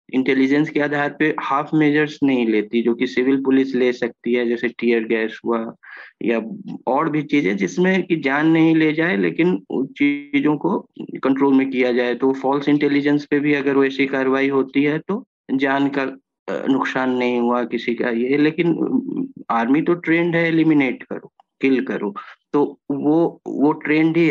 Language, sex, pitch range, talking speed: Hindi, male, 125-150 Hz, 170 wpm